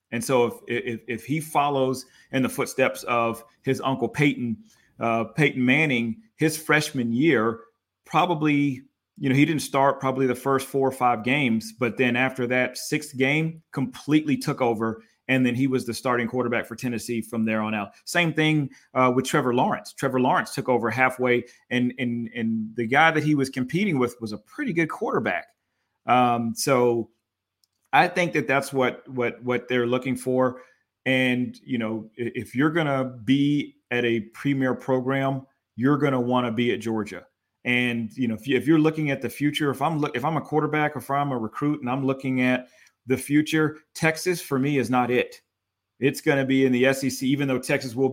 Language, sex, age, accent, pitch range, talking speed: English, male, 30-49, American, 120-140 Hz, 200 wpm